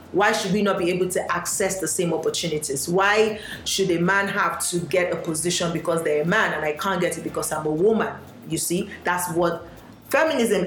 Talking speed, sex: 215 wpm, female